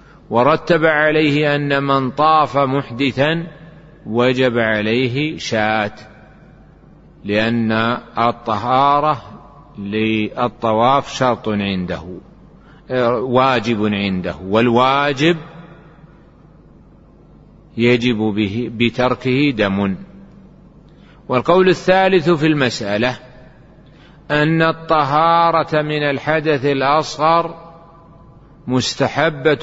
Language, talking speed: Arabic, 60 wpm